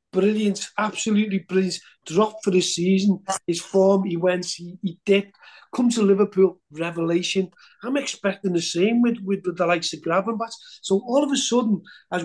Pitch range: 175-220 Hz